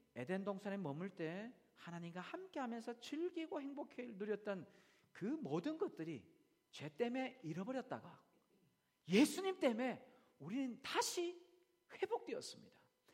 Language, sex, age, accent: Korean, male, 40-59, native